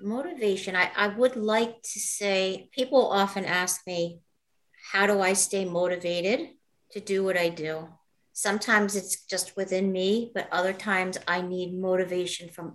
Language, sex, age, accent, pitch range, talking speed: English, female, 50-69, American, 175-215 Hz, 155 wpm